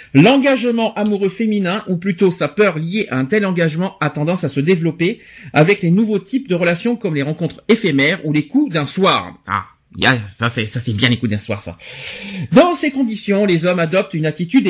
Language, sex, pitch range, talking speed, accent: French, male, 145-215 Hz, 205 wpm, French